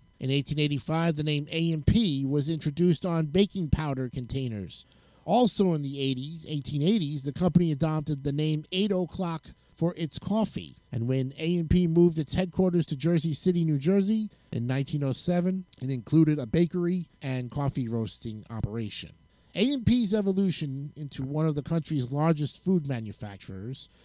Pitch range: 140-180 Hz